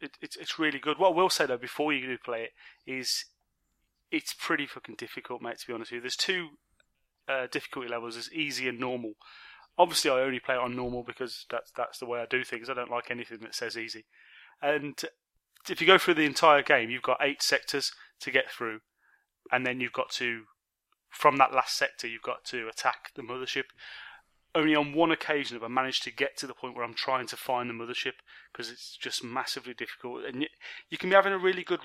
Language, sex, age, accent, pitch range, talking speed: English, male, 30-49, British, 120-150 Hz, 225 wpm